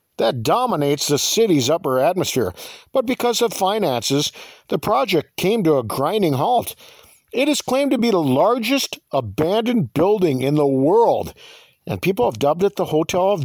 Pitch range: 145-235 Hz